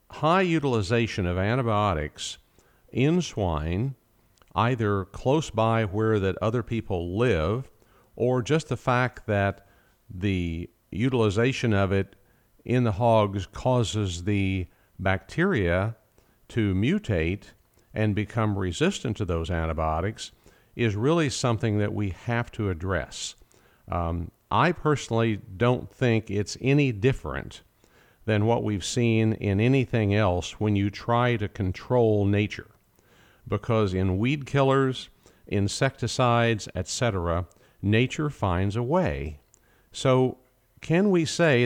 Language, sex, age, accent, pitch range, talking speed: English, male, 50-69, American, 95-120 Hz, 115 wpm